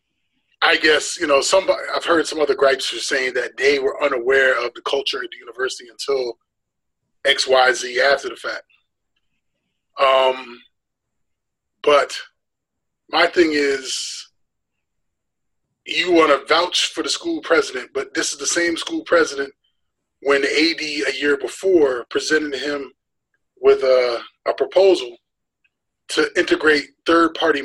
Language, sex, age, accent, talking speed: English, male, 20-39, American, 135 wpm